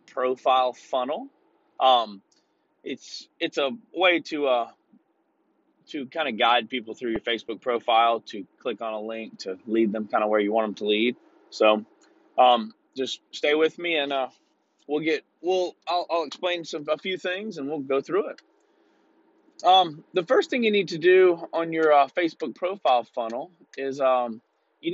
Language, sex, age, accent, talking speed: English, male, 30-49, American, 180 wpm